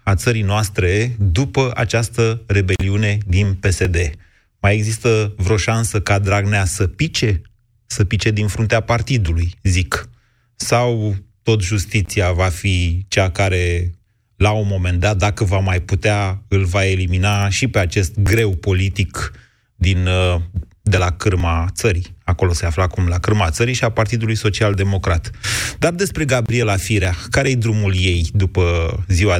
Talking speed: 145 wpm